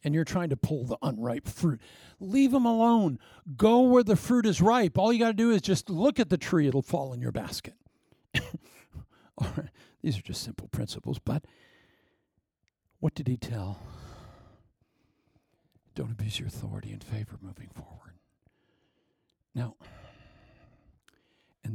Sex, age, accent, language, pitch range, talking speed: male, 60-79, American, English, 110-145 Hz, 145 wpm